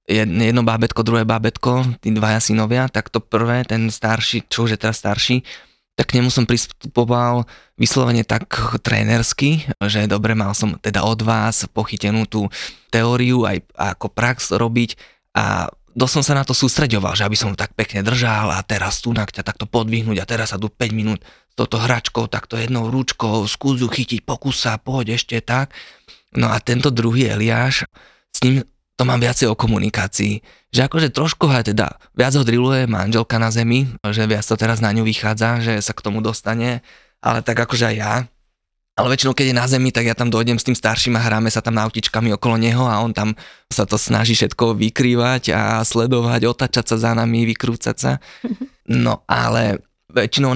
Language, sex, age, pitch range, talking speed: Slovak, male, 20-39, 110-125 Hz, 185 wpm